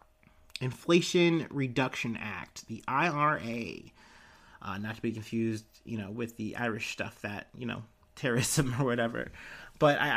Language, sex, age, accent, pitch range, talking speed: English, male, 30-49, American, 120-160 Hz, 140 wpm